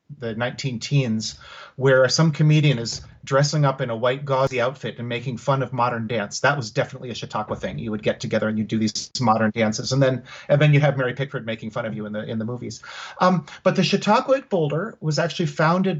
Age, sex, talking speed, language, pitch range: 30-49, male, 230 wpm, English, 125-155 Hz